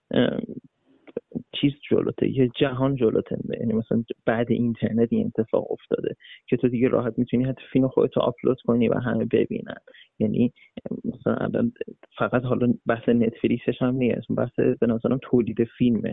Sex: male